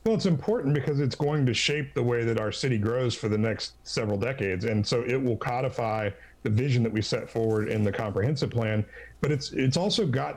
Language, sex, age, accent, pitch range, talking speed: English, male, 40-59, American, 110-130 Hz, 225 wpm